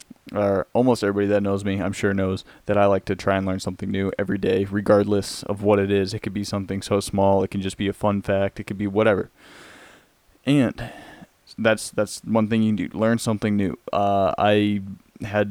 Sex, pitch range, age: male, 100-105 Hz, 20-39